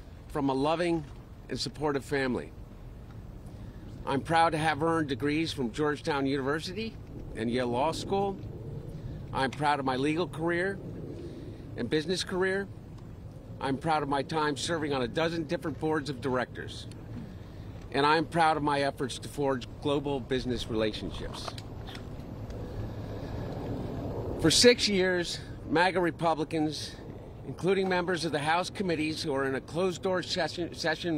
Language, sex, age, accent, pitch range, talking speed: English, male, 50-69, American, 115-165 Hz, 135 wpm